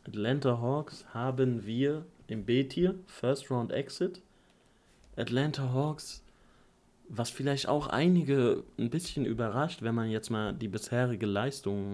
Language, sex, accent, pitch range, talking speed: German, male, German, 110-130 Hz, 115 wpm